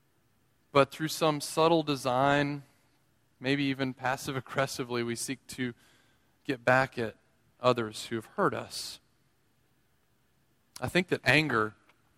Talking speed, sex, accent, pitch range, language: 115 wpm, male, American, 120-150 Hz, English